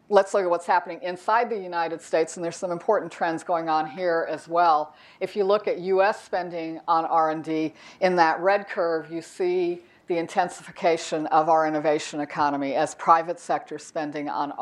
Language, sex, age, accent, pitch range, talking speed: English, female, 60-79, American, 155-180 Hz, 180 wpm